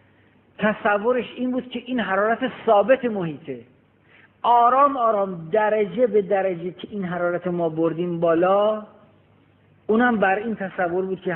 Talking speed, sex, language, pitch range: 130 wpm, male, Persian, 150-215 Hz